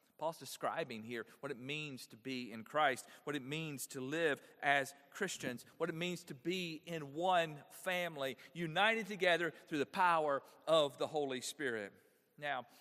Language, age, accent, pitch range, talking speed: English, 40-59, American, 130-170 Hz, 165 wpm